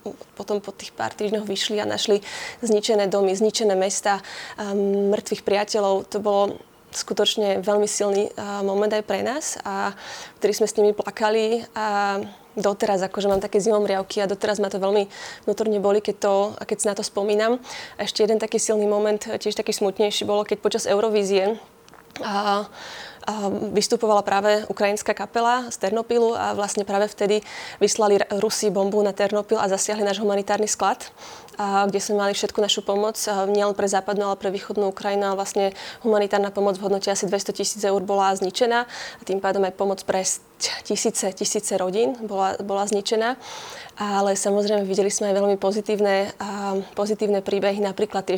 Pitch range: 200-215 Hz